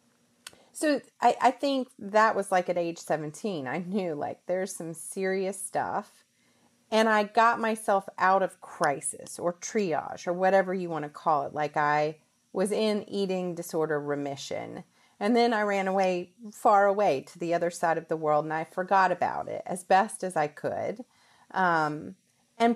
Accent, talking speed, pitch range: American, 175 wpm, 170-215 Hz